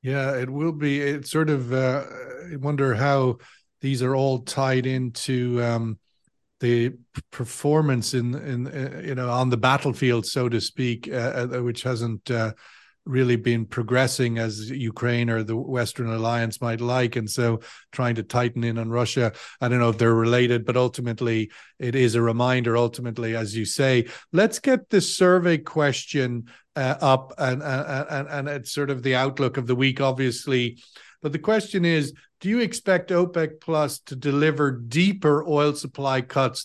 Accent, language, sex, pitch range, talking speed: Irish, English, male, 120-145 Hz, 170 wpm